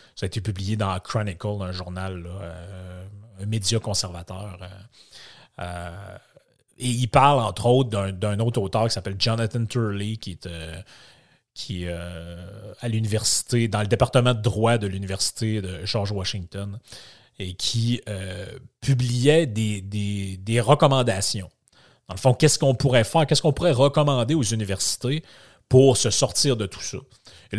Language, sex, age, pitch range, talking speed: French, male, 30-49, 95-125 Hz, 150 wpm